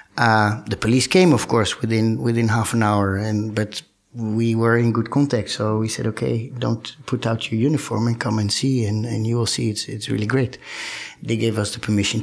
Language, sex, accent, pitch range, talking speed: English, male, Dutch, 105-120 Hz, 220 wpm